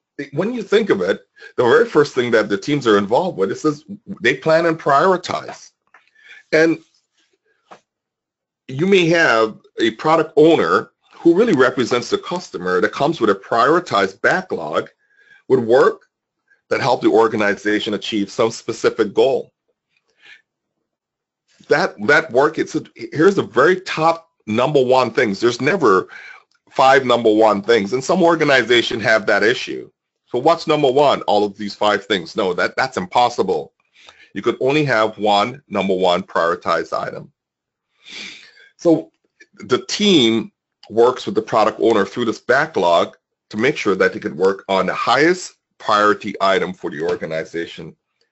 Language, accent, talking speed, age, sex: English, American, 150 wpm, 40-59, male